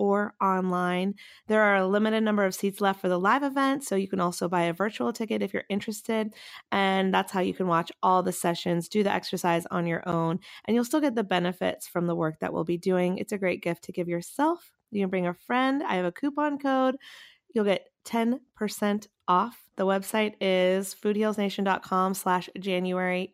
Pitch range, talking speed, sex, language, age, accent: 185-220 Hz, 205 wpm, female, English, 20-39, American